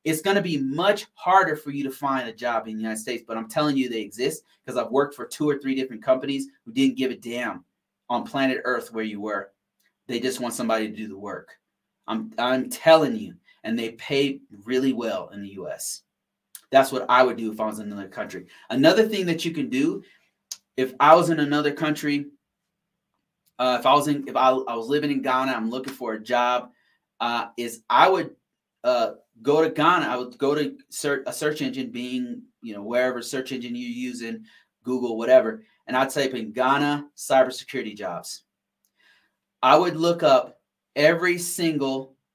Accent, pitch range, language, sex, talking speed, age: American, 125-165 Hz, English, male, 200 wpm, 30-49